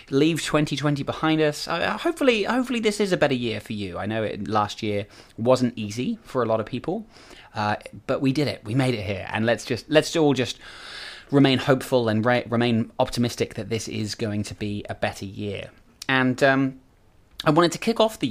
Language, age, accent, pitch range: English, 20-39, British, 105-135 Hz